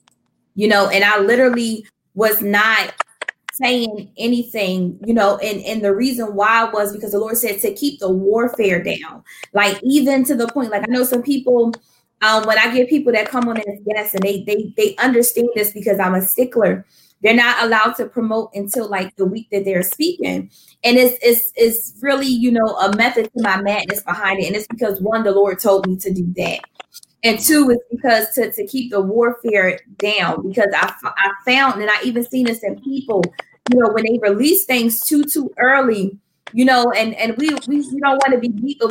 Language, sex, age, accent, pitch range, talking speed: English, female, 20-39, American, 210-255 Hz, 215 wpm